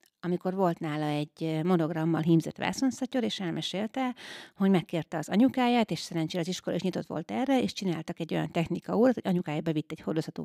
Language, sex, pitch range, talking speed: Hungarian, female, 165-215 Hz, 185 wpm